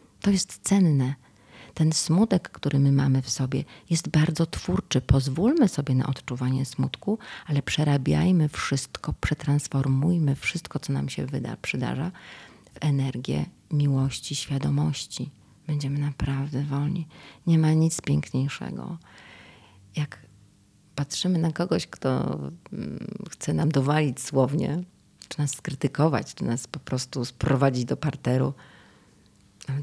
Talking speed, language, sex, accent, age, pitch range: 115 wpm, Polish, female, native, 30-49, 135-170 Hz